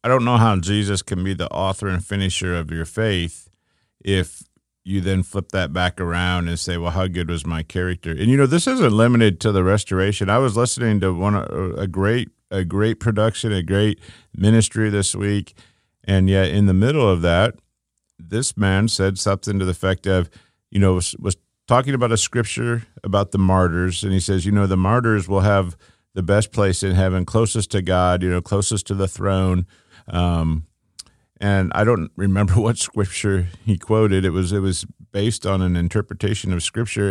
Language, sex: English, male